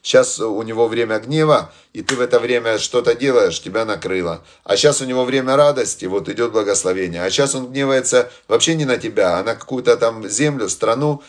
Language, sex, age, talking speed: Russian, male, 30-49, 195 wpm